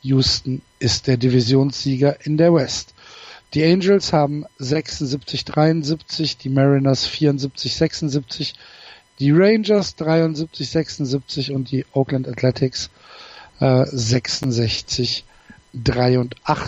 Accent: German